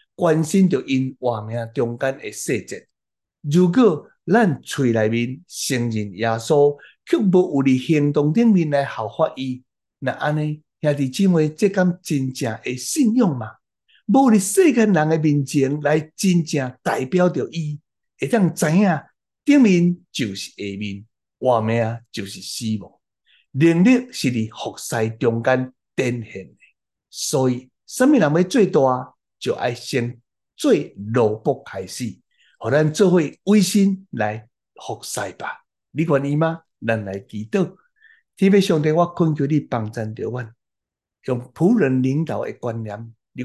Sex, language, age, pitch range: male, Chinese, 60-79, 115-170 Hz